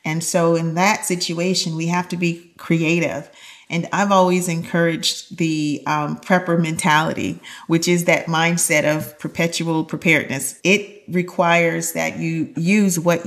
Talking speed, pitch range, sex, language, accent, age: 140 wpm, 165-180 Hz, female, English, American, 40-59